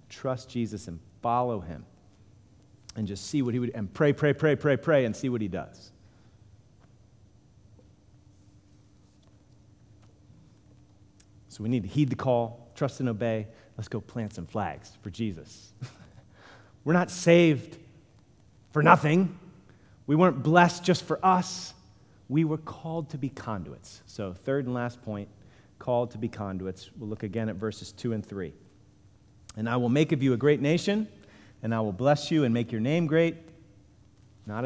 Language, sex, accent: English, male, American